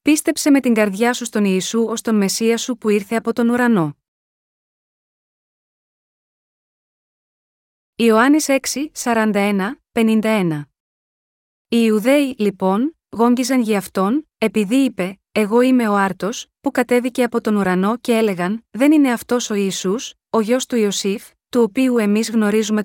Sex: female